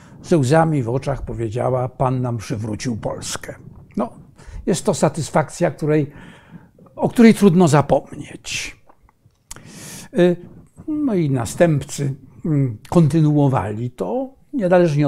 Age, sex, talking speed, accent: 60-79, male, 90 wpm, native